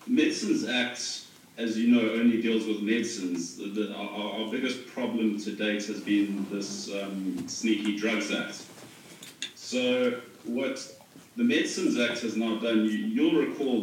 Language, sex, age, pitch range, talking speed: English, male, 30-49, 105-120 Hz, 150 wpm